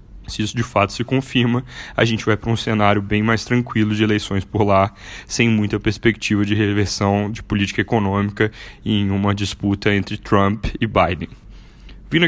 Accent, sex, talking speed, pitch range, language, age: Brazilian, male, 170 wpm, 100-115 Hz, Portuguese, 10-29